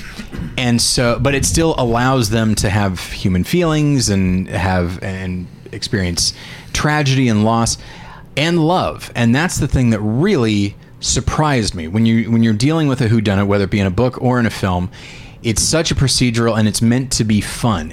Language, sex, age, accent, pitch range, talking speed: English, male, 30-49, American, 105-130 Hz, 185 wpm